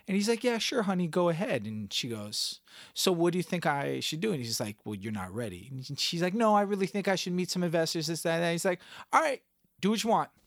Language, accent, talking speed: English, American, 270 wpm